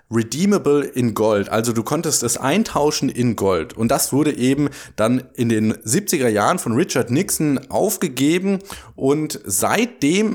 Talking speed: 145 wpm